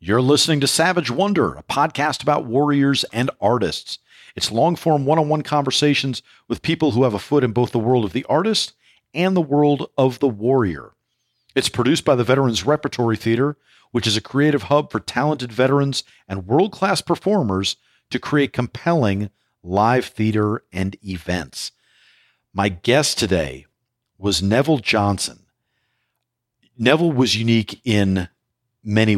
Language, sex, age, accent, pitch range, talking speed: English, male, 50-69, American, 100-135 Hz, 145 wpm